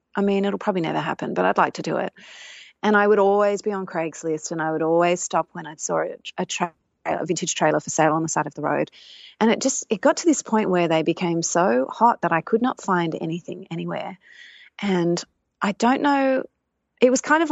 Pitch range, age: 170-215 Hz, 30-49